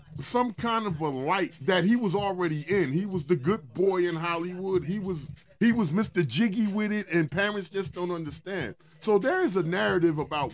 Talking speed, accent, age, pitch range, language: 205 wpm, American, 30-49, 145-185 Hz, English